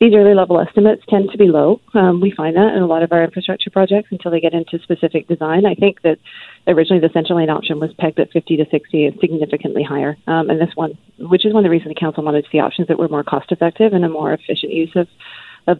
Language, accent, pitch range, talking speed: English, American, 160-195 Hz, 260 wpm